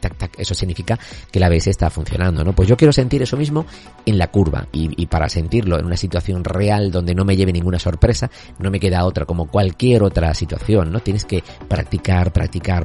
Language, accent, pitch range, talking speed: Spanish, Spanish, 90-120 Hz, 205 wpm